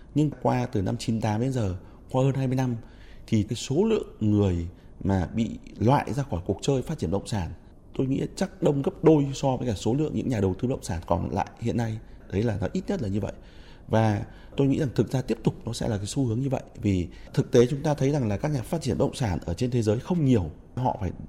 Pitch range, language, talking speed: 95-140 Hz, Vietnamese, 270 wpm